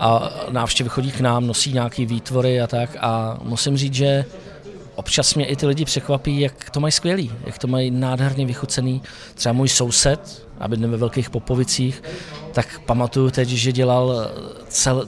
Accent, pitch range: native, 120-140 Hz